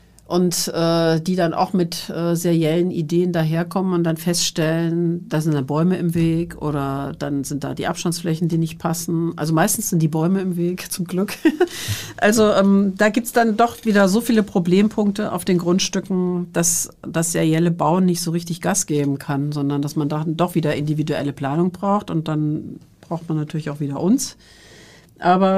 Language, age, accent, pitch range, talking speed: German, 50-69, German, 165-195 Hz, 185 wpm